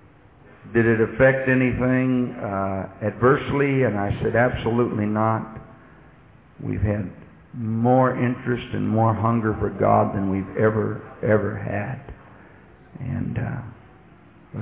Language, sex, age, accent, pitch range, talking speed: English, male, 60-79, American, 105-130 Hz, 110 wpm